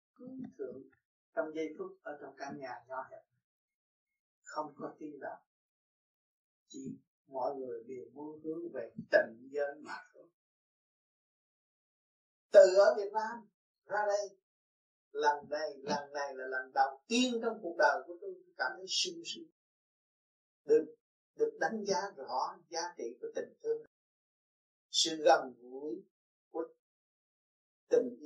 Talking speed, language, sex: 140 wpm, Vietnamese, male